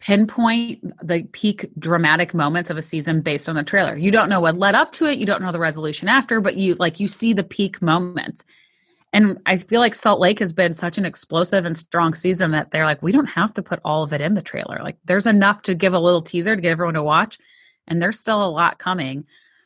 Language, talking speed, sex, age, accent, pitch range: English, 245 wpm, female, 30-49, American, 170-215 Hz